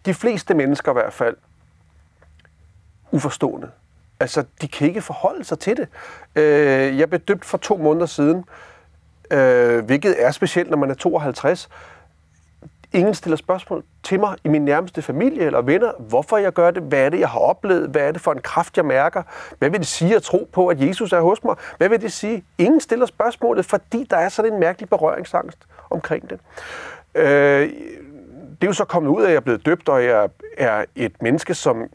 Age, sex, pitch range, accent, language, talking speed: 40-59, male, 135-190 Hz, native, Danish, 195 wpm